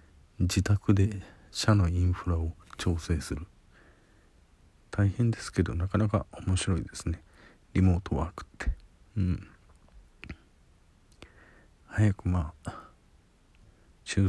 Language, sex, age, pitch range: Japanese, male, 50-69, 85-105 Hz